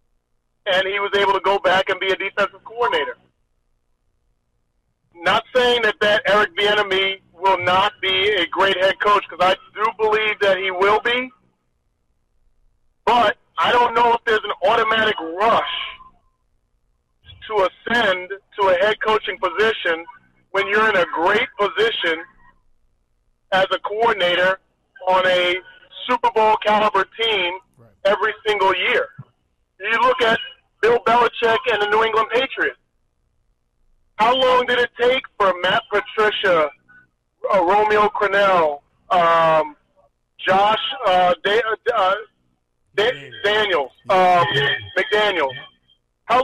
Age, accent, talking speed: 40-59, American, 125 wpm